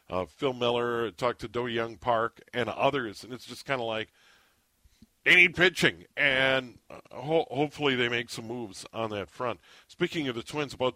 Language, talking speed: English, 185 wpm